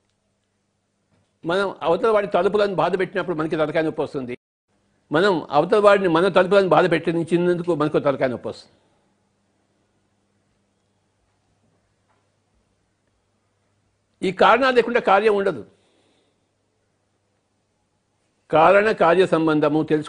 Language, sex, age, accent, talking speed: English, male, 60-79, Indian, 70 wpm